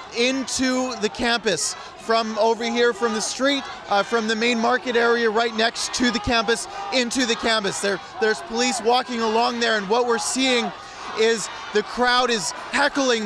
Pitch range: 215-245 Hz